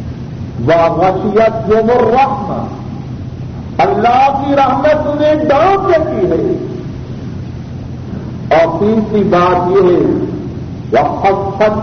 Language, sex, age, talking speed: Urdu, male, 50-69, 75 wpm